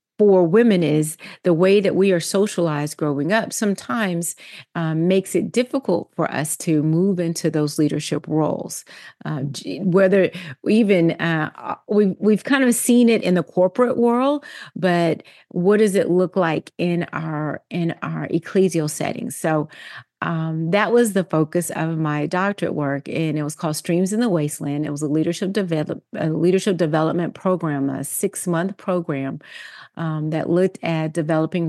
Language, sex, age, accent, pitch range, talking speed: English, female, 40-59, American, 155-190 Hz, 160 wpm